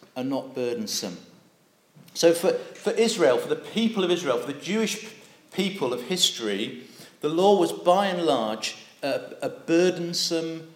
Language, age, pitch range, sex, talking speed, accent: English, 40-59, 145-205 Hz, male, 150 wpm, British